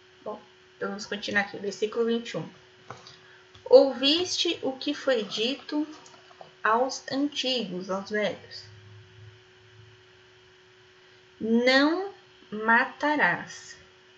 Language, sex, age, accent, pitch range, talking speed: Portuguese, female, 10-29, Brazilian, 185-265 Hz, 70 wpm